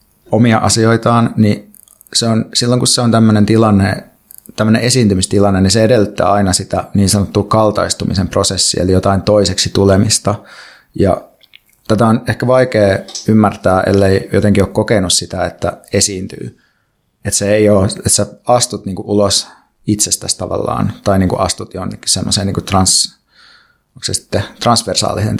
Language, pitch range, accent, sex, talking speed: Finnish, 95-110 Hz, native, male, 130 wpm